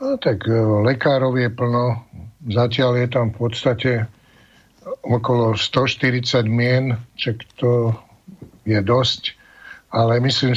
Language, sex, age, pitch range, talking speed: Slovak, male, 60-79, 115-130 Hz, 100 wpm